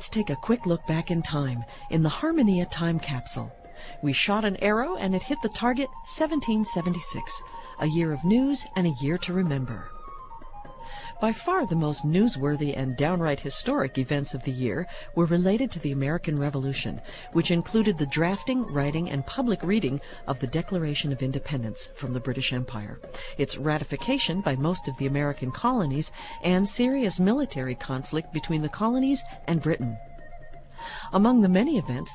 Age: 50-69